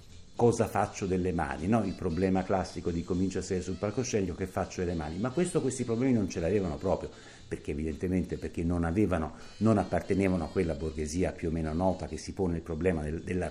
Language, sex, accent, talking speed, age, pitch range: Italian, male, native, 210 wpm, 60-79, 85-115 Hz